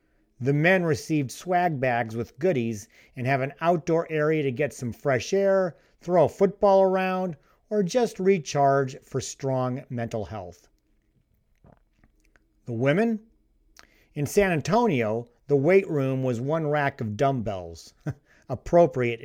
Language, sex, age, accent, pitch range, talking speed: English, male, 50-69, American, 120-170 Hz, 130 wpm